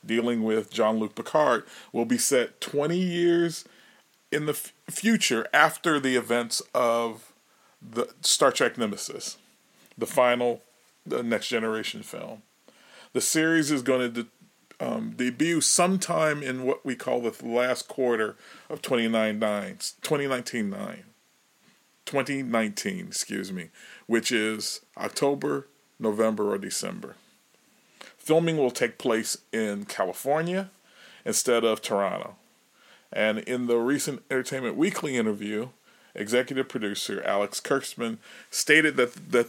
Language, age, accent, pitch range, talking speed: English, 40-59, American, 115-155 Hz, 120 wpm